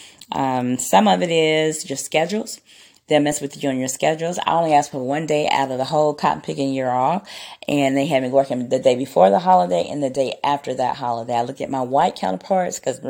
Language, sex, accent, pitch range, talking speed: English, female, American, 130-155 Hz, 235 wpm